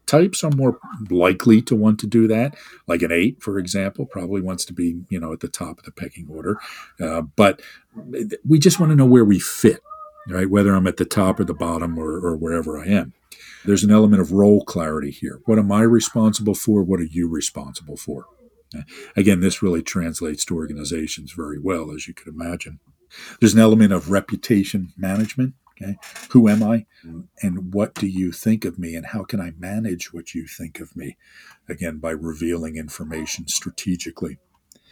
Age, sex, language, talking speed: 50-69, male, English, 190 wpm